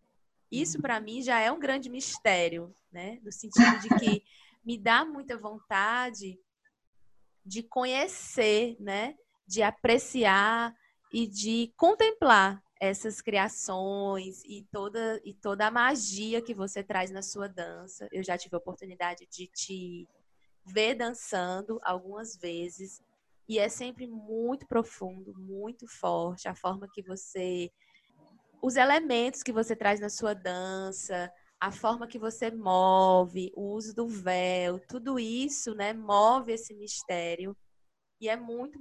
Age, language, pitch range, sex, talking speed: 20-39, Portuguese, 190-235 Hz, female, 135 wpm